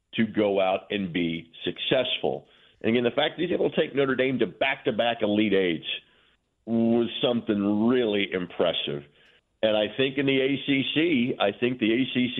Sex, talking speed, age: male, 175 wpm, 50-69